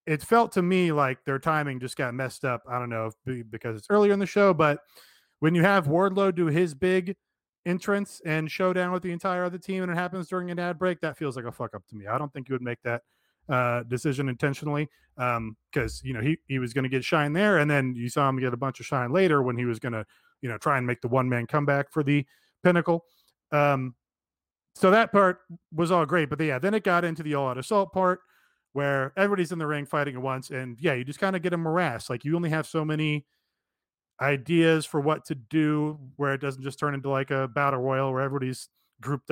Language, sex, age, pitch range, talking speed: English, male, 30-49, 130-175 Hz, 245 wpm